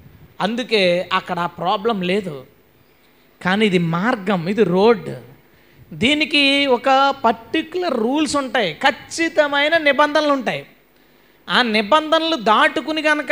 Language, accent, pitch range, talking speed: Telugu, native, 185-280 Hz, 100 wpm